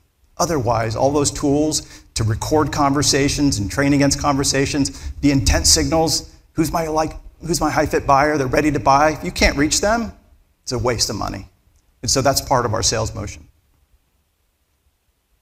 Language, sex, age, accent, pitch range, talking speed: English, male, 50-69, American, 100-145 Hz, 165 wpm